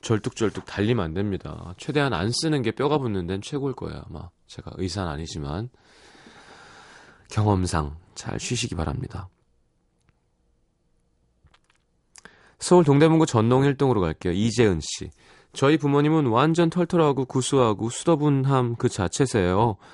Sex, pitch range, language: male, 95-140 Hz, Korean